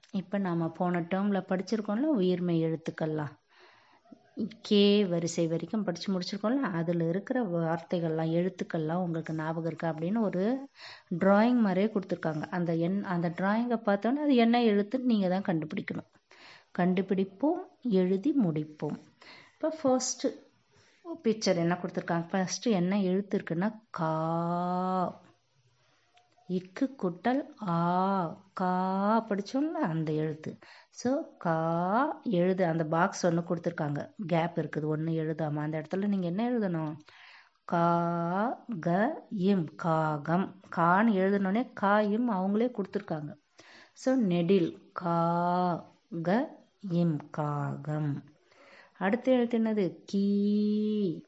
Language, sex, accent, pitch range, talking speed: Tamil, female, native, 170-215 Hz, 105 wpm